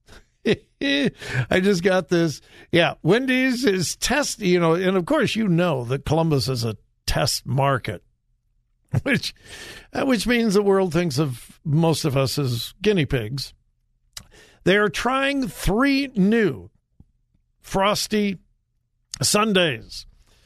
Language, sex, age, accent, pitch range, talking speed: English, male, 50-69, American, 135-210 Hz, 120 wpm